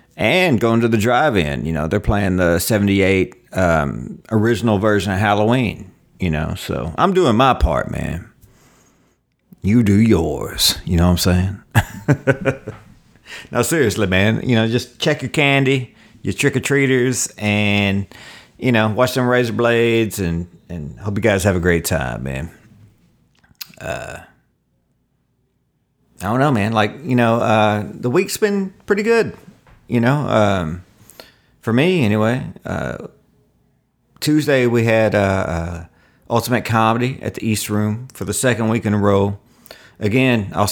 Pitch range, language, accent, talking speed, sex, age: 90-115 Hz, English, American, 150 wpm, male, 50-69